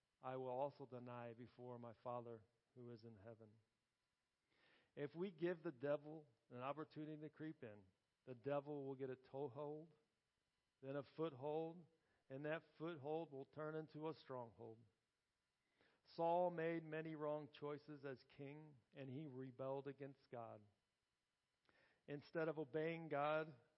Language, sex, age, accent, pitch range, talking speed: English, male, 50-69, American, 125-155 Hz, 135 wpm